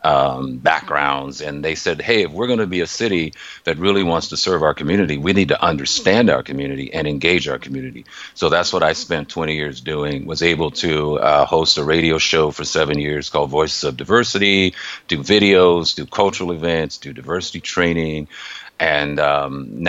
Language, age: English, 50-69